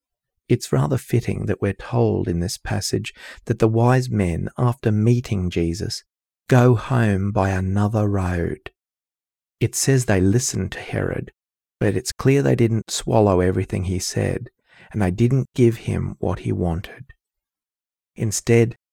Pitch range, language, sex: 95-120 Hz, English, male